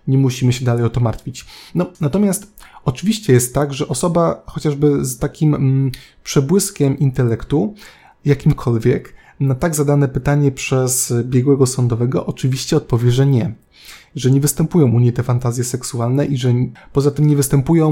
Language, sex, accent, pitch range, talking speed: Polish, male, native, 125-150 Hz, 155 wpm